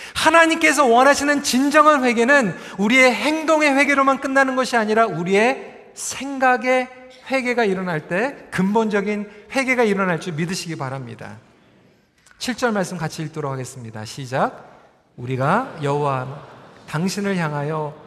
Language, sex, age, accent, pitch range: Korean, male, 40-59, native, 145-235 Hz